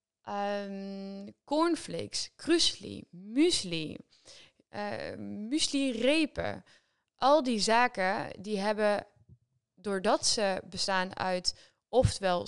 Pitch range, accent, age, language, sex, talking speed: 175-215 Hz, Dutch, 20-39, Dutch, female, 75 wpm